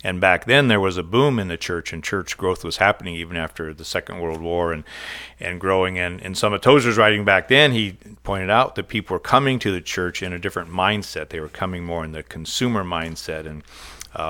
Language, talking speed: English, 235 wpm